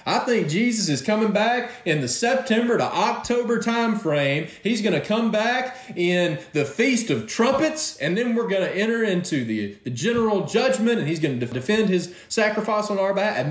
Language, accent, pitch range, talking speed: English, American, 170-225 Hz, 200 wpm